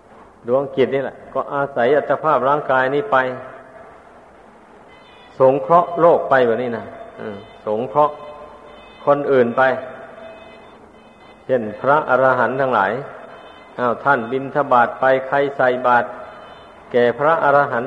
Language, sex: Thai, male